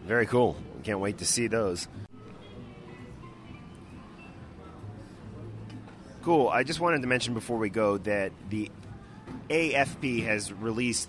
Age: 30-49